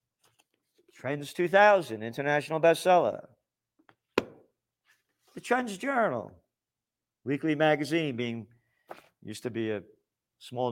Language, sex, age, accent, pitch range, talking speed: English, male, 50-69, American, 130-165 Hz, 85 wpm